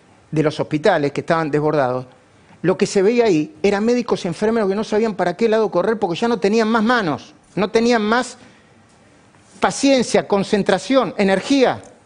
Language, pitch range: Spanish, 165-230 Hz